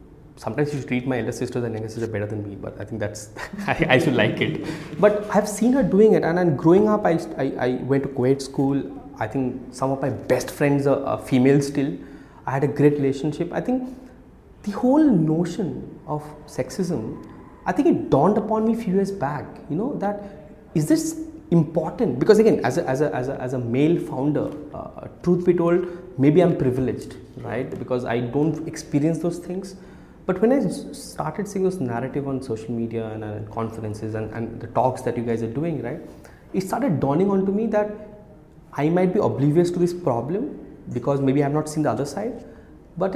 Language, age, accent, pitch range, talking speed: English, 20-39, Indian, 130-190 Hz, 205 wpm